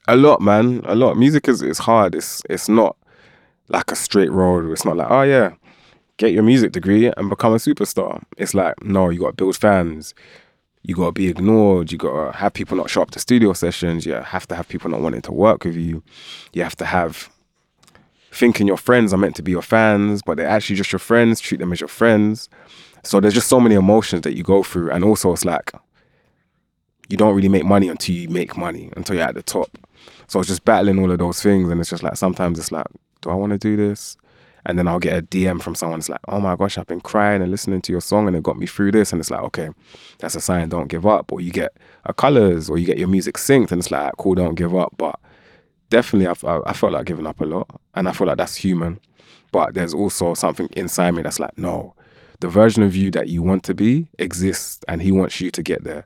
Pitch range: 85-105 Hz